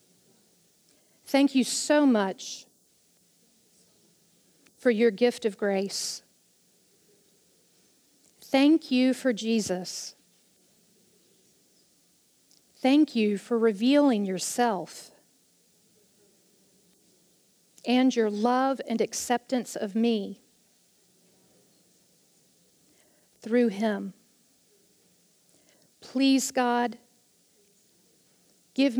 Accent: American